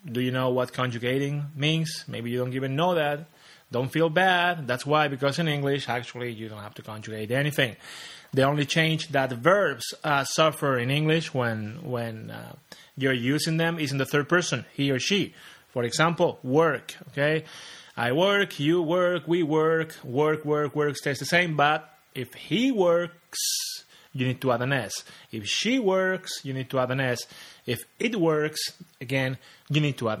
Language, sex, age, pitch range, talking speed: English, male, 30-49, 130-165 Hz, 195 wpm